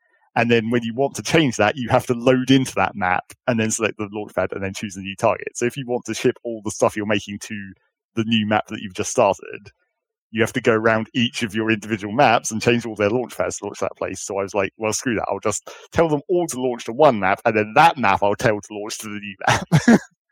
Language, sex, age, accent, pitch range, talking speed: English, male, 40-59, British, 100-120 Hz, 280 wpm